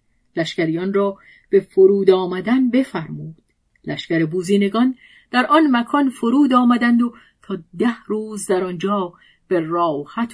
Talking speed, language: 120 wpm, Persian